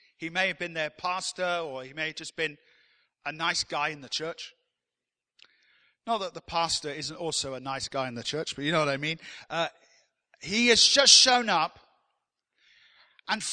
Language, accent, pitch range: English, British, 170-235 Hz